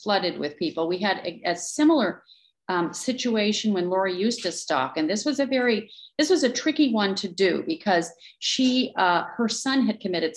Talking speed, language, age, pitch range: 195 wpm, English, 40-59, 175-225 Hz